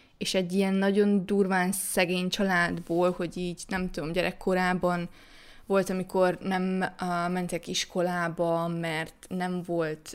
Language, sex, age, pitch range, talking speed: Hungarian, female, 20-39, 180-200 Hz, 125 wpm